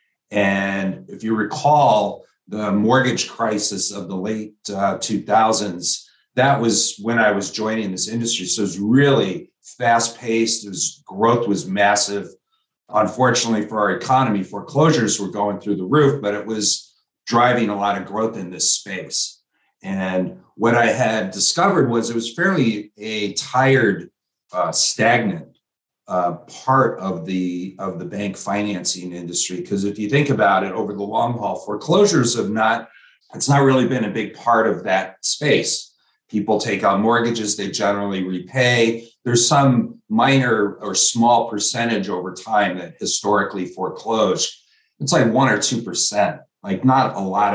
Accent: American